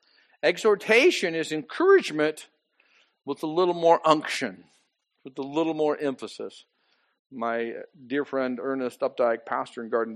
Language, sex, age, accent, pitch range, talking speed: English, male, 50-69, American, 140-195 Hz, 125 wpm